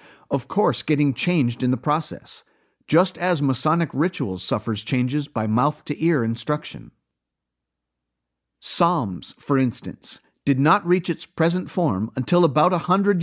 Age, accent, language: 50-69, American, English